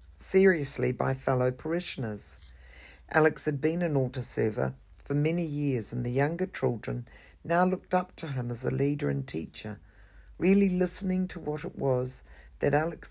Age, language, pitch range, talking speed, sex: 50-69, English, 110-170 Hz, 160 wpm, female